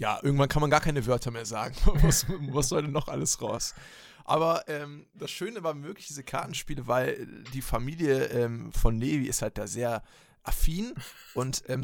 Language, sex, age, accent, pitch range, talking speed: German, male, 20-39, German, 120-150 Hz, 190 wpm